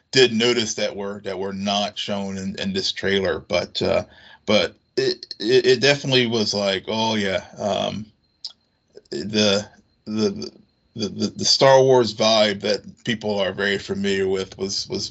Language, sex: English, male